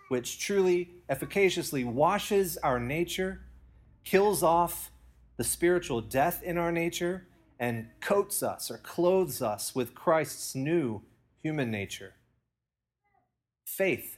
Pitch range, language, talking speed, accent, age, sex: 115-155 Hz, English, 110 wpm, American, 30-49, male